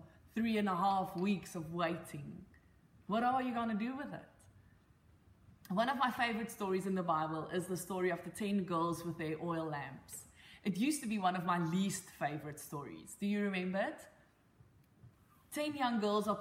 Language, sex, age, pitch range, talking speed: English, female, 20-39, 160-205 Hz, 190 wpm